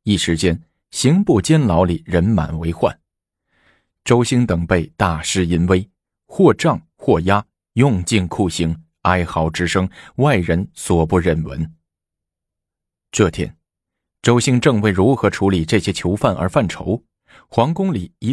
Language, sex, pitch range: Chinese, male, 85-110 Hz